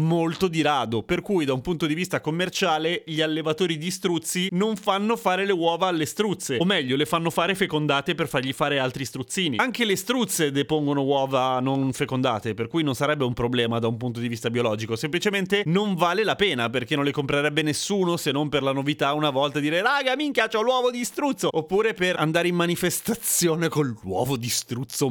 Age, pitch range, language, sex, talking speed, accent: 30-49, 140-190 Hz, Italian, male, 205 wpm, native